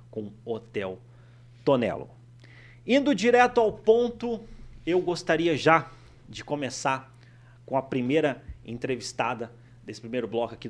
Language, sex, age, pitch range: Portuguese, male, 30-49, 120-155 Hz